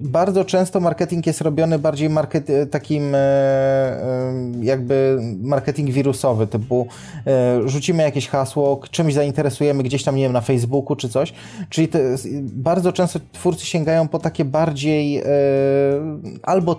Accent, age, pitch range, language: native, 20-39, 130-165 Hz, Polish